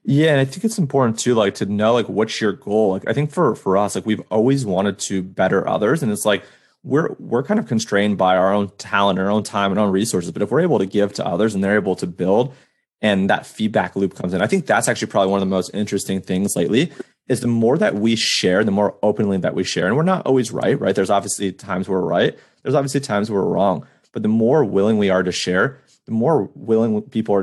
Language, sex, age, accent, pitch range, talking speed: English, male, 30-49, American, 100-120 Hz, 260 wpm